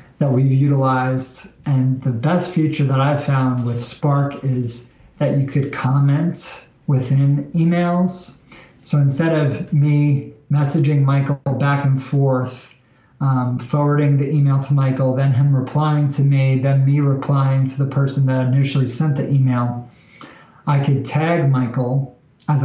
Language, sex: English, male